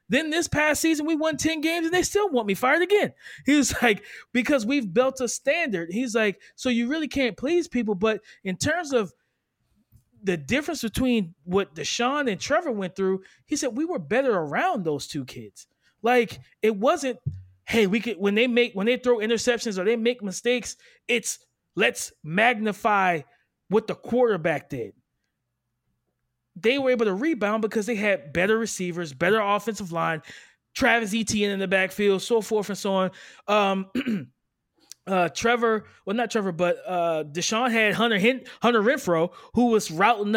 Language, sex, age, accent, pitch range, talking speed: English, male, 20-39, American, 190-245 Hz, 170 wpm